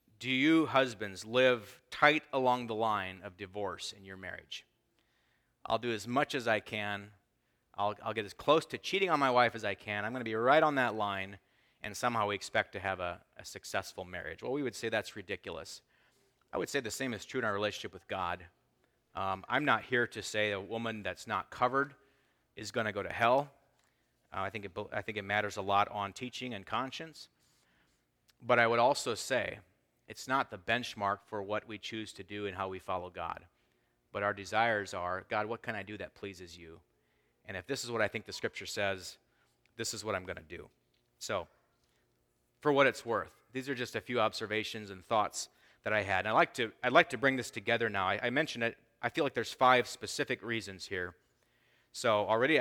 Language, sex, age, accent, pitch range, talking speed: English, male, 30-49, American, 95-120 Hz, 210 wpm